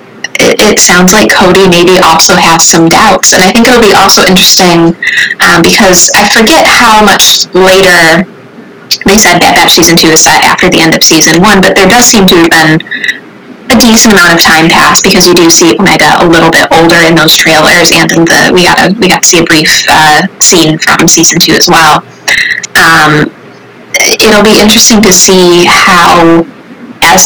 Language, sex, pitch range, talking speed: English, female, 165-195 Hz, 195 wpm